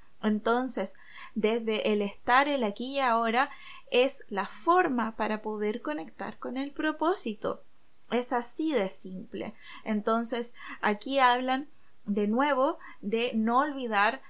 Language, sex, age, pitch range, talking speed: Spanish, female, 20-39, 215-270 Hz, 120 wpm